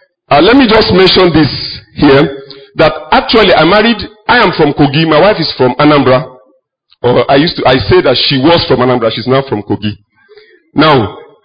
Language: English